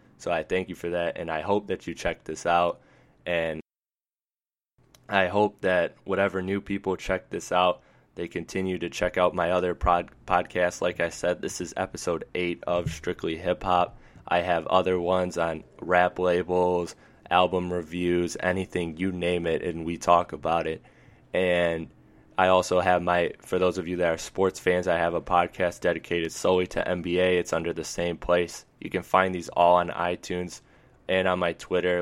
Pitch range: 85-90 Hz